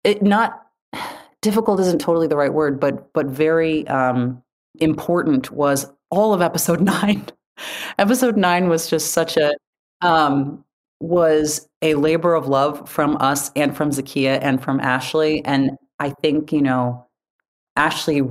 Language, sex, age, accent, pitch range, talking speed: English, female, 30-49, American, 130-155 Hz, 145 wpm